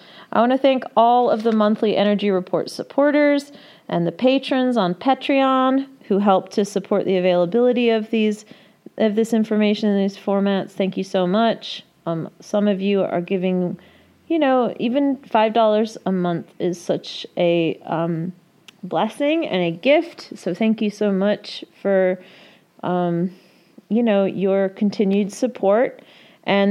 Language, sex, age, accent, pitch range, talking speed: English, female, 30-49, American, 180-235 Hz, 150 wpm